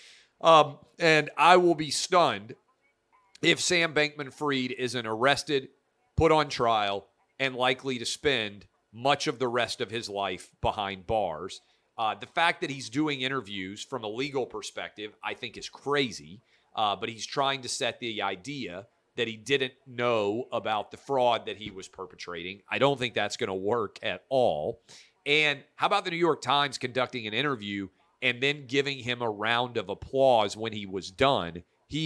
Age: 40-59